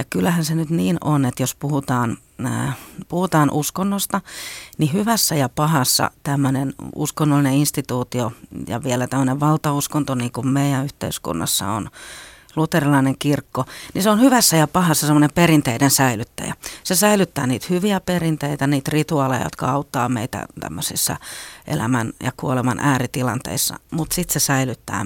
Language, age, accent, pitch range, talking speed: Finnish, 40-59, native, 135-160 Hz, 135 wpm